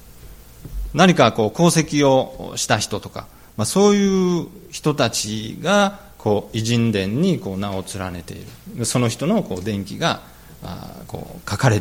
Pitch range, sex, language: 95-135 Hz, male, Japanese